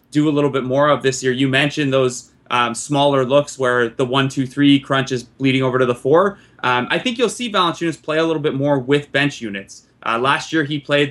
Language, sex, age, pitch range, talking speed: English, male, 20-39, 130-155 Hz, 245 wpm